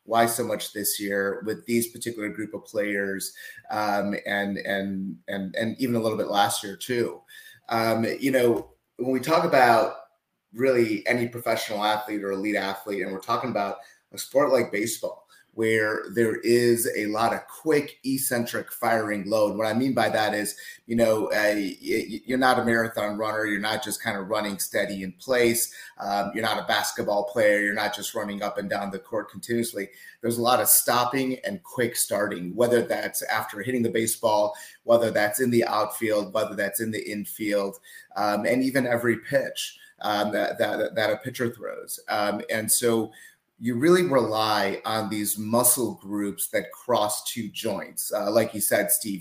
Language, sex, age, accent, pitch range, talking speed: English, male, 30-49, American, 105-120 Hz, 180 wpm